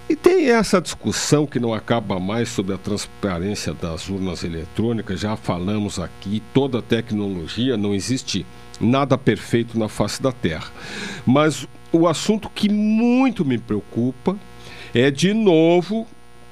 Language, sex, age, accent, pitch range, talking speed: Portuguese, male, 50-69, Brazilian, 105-160 Hz, 140 wpm